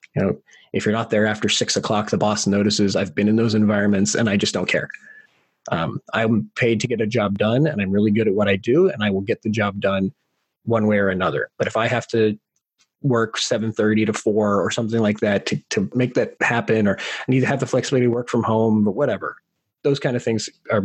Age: 30-49